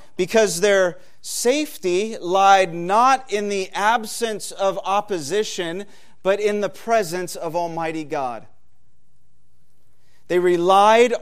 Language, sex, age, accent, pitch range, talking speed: English, male, 40-59, American, 145-195 Hz, 100 wpm